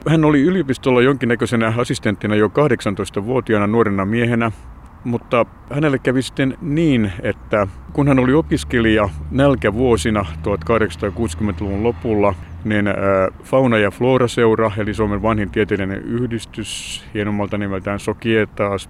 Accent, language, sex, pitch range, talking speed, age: native, Finnish, male, 100-120 Hz, 110 wpm, 60-79